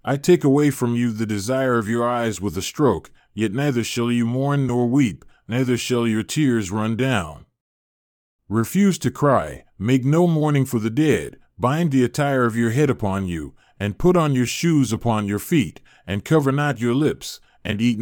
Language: English